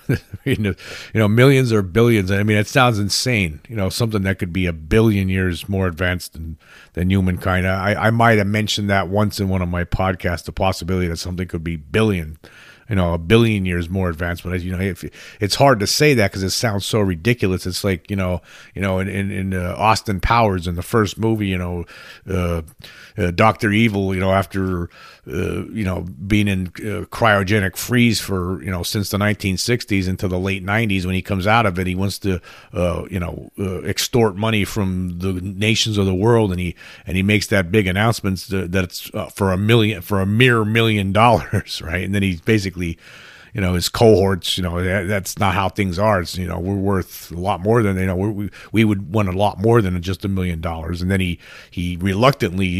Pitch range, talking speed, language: 90-105 Hz, 215 wpm, English